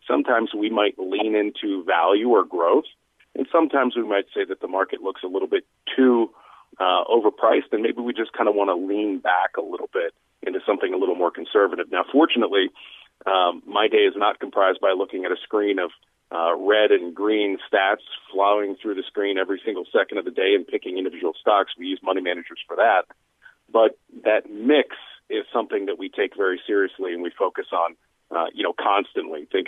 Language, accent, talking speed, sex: English, American, 200 wpm, male